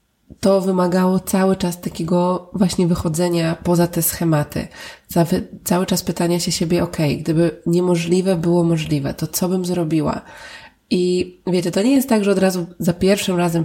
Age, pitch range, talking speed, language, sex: 20-39, 160-185 Hz, 160 wpm, Polish, female